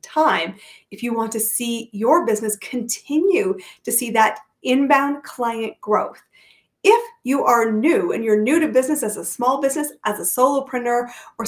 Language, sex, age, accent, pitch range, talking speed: English, female, 30-49, American, 215-300 Hz, 165 wpm